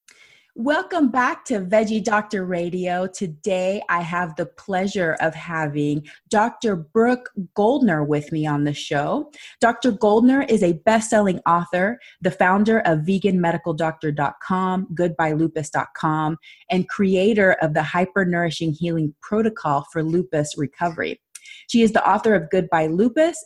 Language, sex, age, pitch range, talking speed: English, female, 30-49, 160-215 Hz, 125 wpm